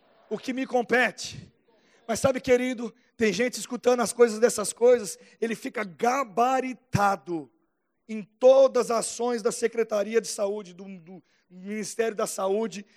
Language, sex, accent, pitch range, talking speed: Portuguese, male, Brazilian, 210-255 Hz, 140 wpm